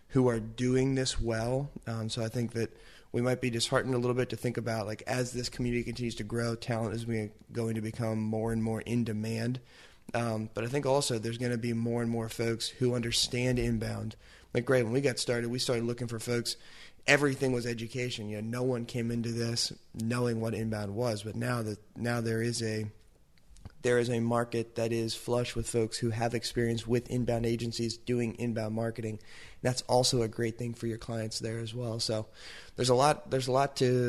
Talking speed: 215 wpm